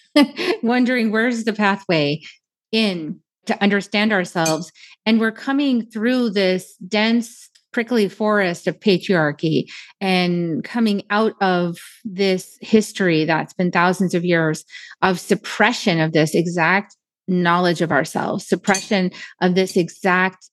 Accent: American